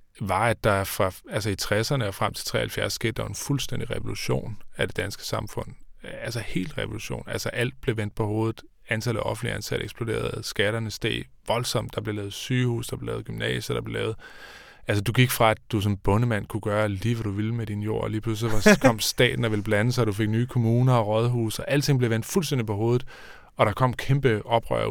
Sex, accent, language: male, native, Danish